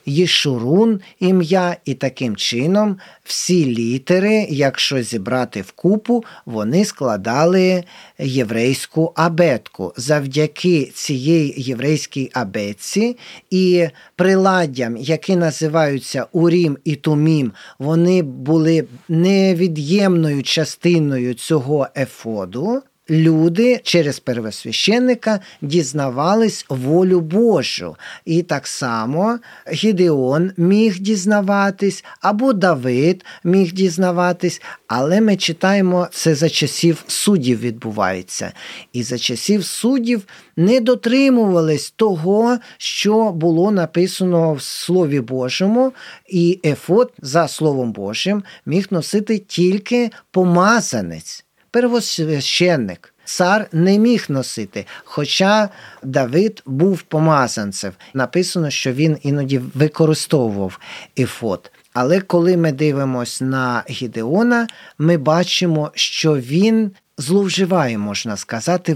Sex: male